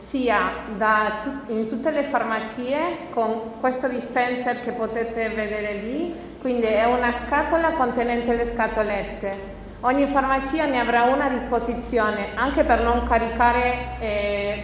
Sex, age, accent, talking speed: female, 30-49, native, 125 wpm